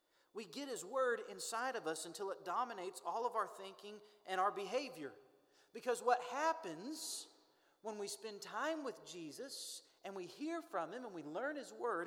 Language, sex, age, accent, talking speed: English, male, 40-59, American, 180 wpm